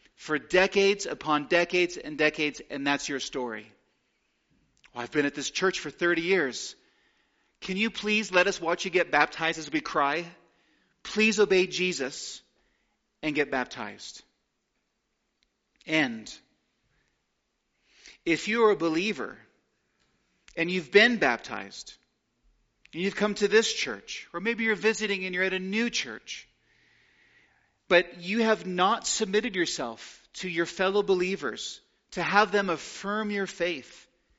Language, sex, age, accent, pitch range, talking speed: English, male, 40-59, American, 160-205 Hz, 135 wpm